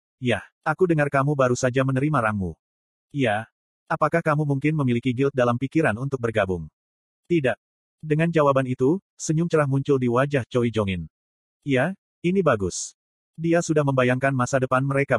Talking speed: 150 wpm